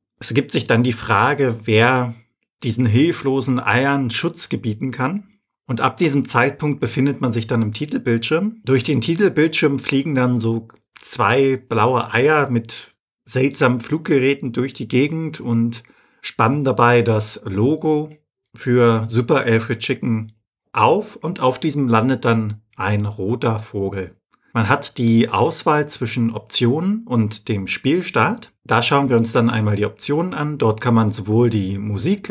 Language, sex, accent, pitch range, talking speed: German, male, German, 115-140 Hz, 150 wpm